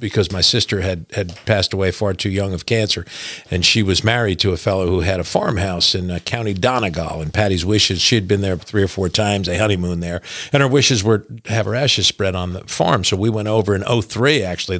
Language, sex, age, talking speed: English, male, 50-69, 245 wpm